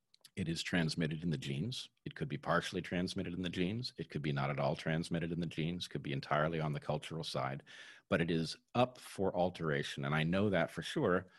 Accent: American